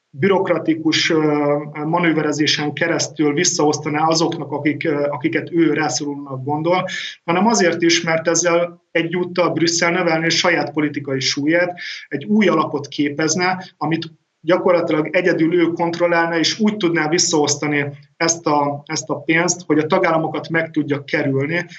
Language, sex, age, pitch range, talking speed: Hungarian, male, 30-49, 145-170 Hz, 125 wpm